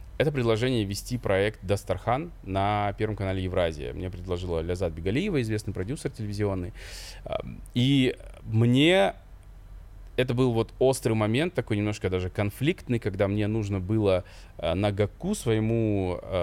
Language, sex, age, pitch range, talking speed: Russian, male, 20-39, 95-120 Hz, 125 wpm